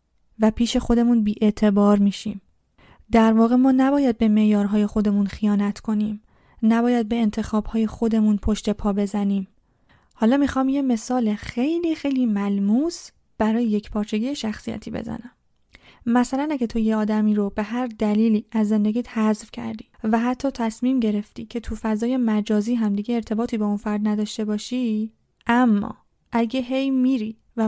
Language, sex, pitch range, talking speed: Persian, female, 215-250 Hz, 145 wpm